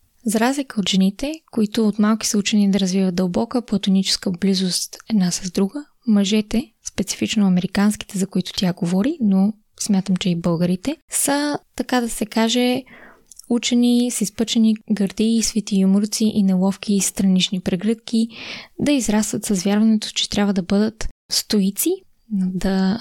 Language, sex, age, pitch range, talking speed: Bulgarian, female, 20-39, 190-220 Hz, 145 wpm